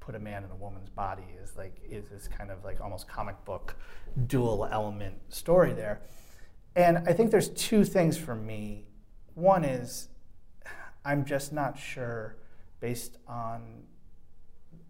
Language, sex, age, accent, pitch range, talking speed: English, male, 30-49, American, 100-140 Hz, 150 wpm